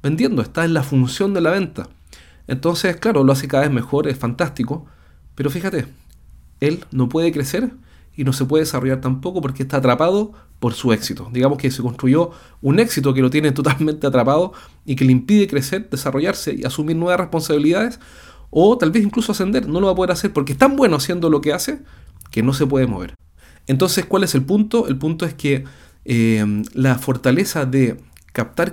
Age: 40-59